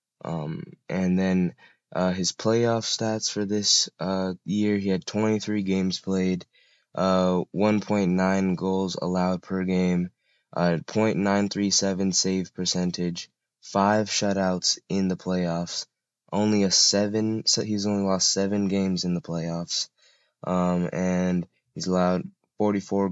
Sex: male